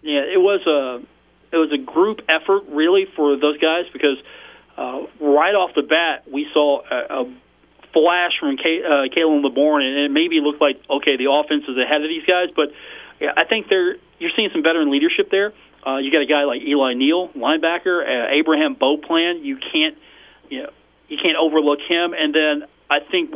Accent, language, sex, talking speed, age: American, English, male, 195 wpm, 40-59